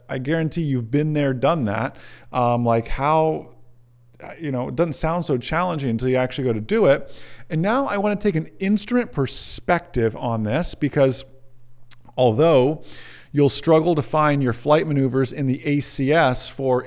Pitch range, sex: 125-170 Hz, male